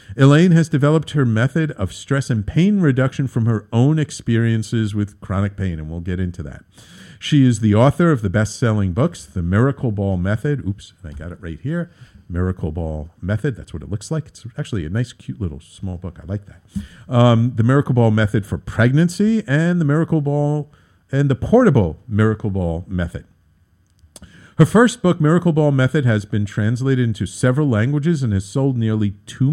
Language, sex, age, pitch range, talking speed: English, male, 50-69, 100-150 Hz, 190 wpm